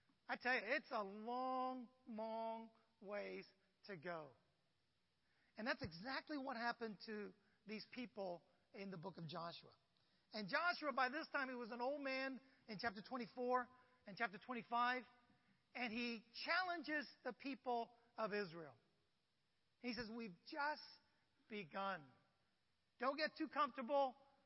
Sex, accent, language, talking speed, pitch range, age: male, American, English, 135 wpm, 215-285 Hz, 40-59